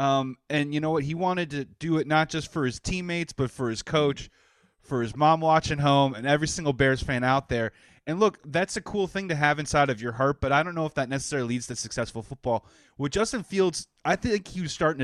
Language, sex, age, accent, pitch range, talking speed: English, male, 30-49, American, 130-170 Hz, 245 wpm